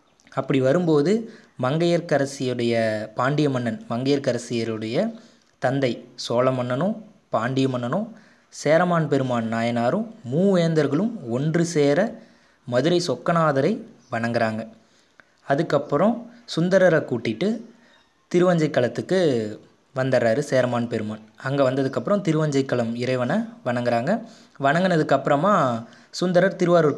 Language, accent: Tamil, native